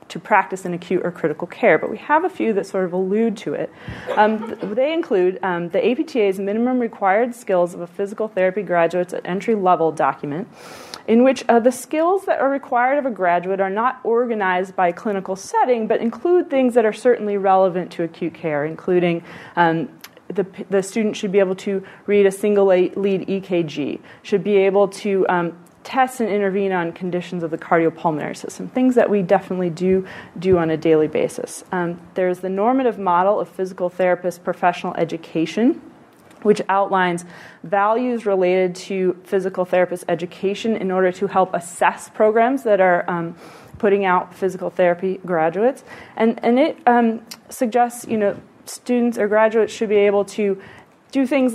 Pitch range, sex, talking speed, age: 180-220 Hz, female, 170 wpm, 30-49